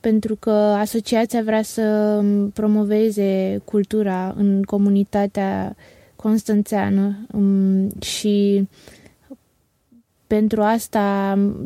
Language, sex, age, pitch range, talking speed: Romanian, female, 20-39, 200-220 Hz, 65 wpm